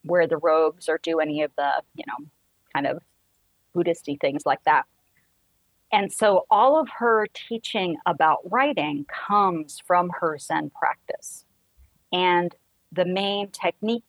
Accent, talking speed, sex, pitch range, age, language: American, 140 wpm, female, 150-180 Hz, 40-59, English